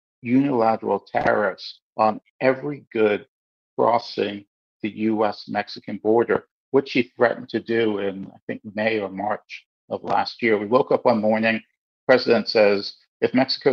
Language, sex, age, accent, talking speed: English, male, 50-69, American, 145 wpm